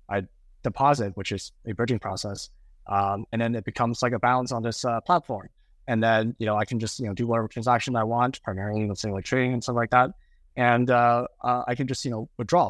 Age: 20-39